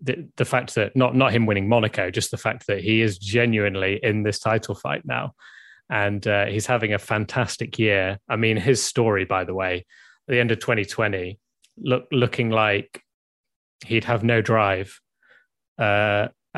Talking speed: 175 wpm